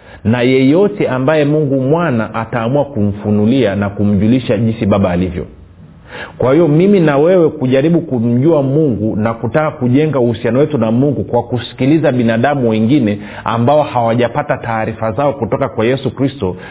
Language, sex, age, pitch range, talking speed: Swahili, male, 40-59, 100-130 Hz, 140 wpm